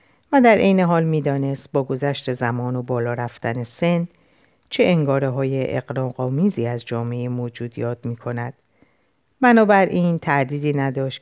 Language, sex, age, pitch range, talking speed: Persian, female, 50-69, 120-150 Hz, 140 wpm